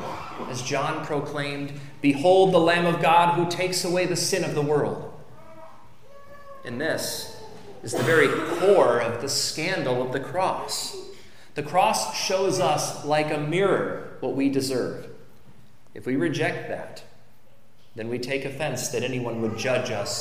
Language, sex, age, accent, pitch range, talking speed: English, male, 30-49, American, 125-170 Hz, 150 wpm